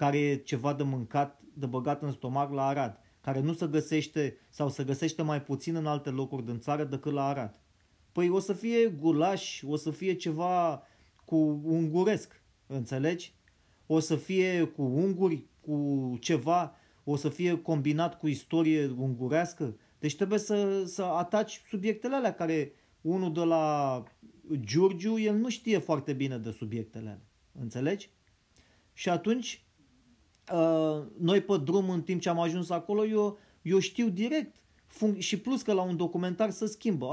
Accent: native